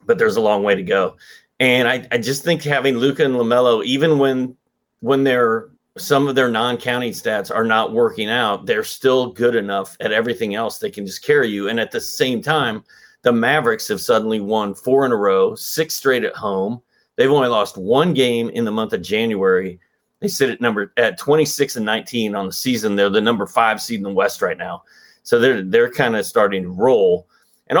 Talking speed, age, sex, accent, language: 215 wpm, 30-49, male, American, English